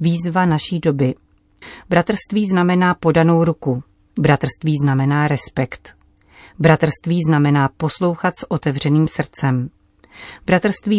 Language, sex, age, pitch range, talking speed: Czech, female, 40-59, 140-175 Hz, 95 wpm